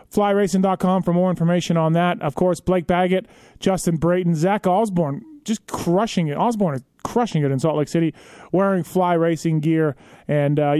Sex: male